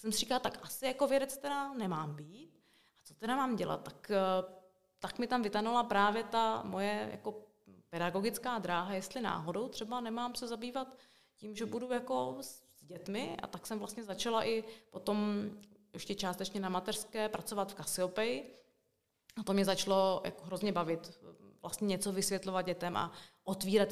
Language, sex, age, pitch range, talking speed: Czech, female, 30-49, 180-220 Hz, 165 wpm